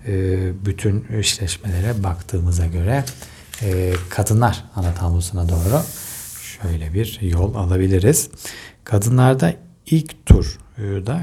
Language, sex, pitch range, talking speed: Turkish, male, 95-125 Hz, 90 wpm